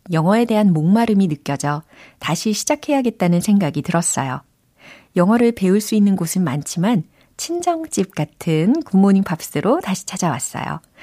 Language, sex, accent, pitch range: Korean, female, native, 155-210 Hz